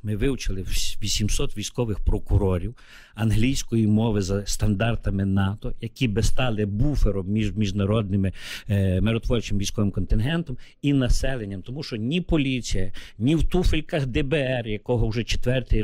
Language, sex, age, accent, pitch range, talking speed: Ukrainian, male, 50-69, native, 105-130 Hz, 125 wpm